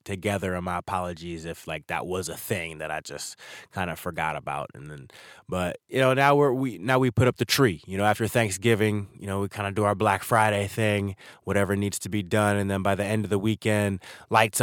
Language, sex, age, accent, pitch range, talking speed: English, male, 20-39, American, 95-110 Hz, 240 wpm